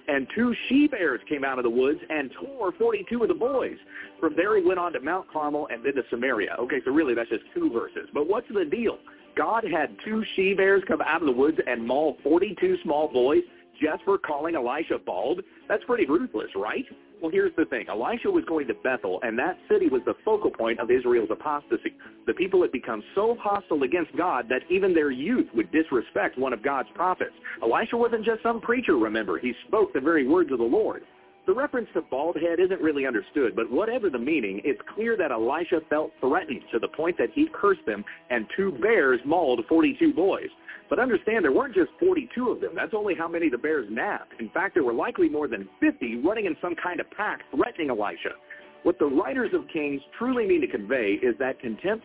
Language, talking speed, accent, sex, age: English, 215 wpm, American, male, 40-59